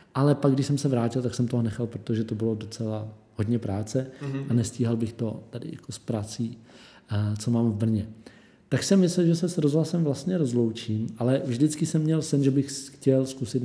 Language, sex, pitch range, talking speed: Czech, male, 120-140 Hz, 200 wpm